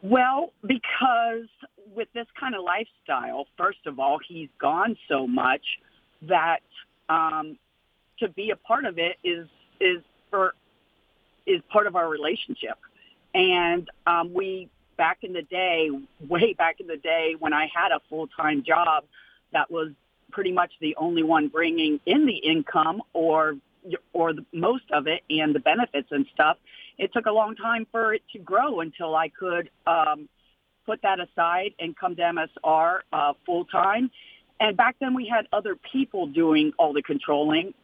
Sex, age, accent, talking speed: female, 40-59, American, 165 wpm